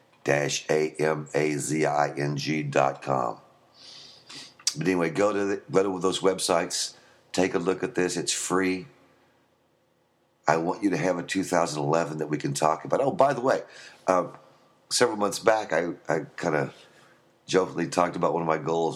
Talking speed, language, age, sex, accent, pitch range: 180 wpm, English, 50-69, male, American, 75-85 Hz